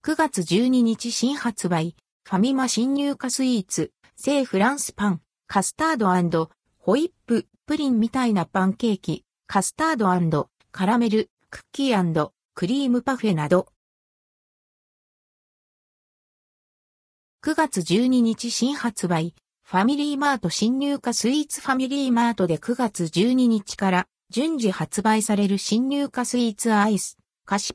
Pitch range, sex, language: 180-265 Hz, female, Japanese